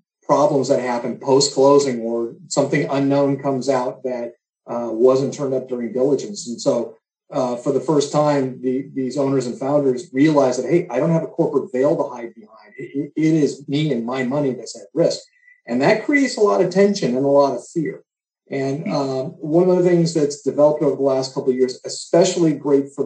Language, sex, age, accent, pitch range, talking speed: English, male, 40-59, American, 130-165 Hz, 210 wpm